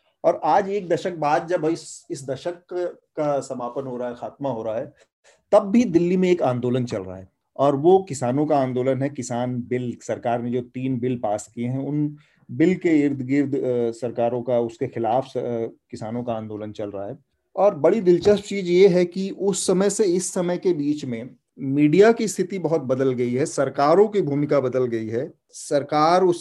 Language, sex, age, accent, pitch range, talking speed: Hindi, male, 30-49, native, 125-160 Hz, 205 wpm